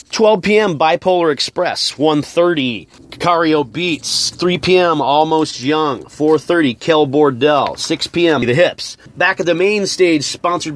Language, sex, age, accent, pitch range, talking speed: English, male, 30-49, American, 135-170 Hz, 135 wpm